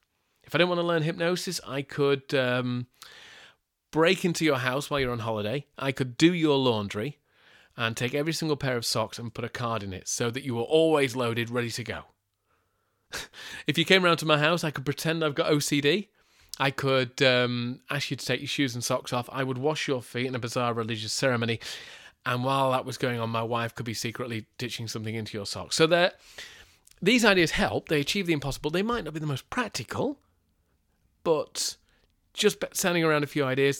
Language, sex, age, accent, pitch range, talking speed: English, male, 30-49, British, 115-150 Hz, 210 wpm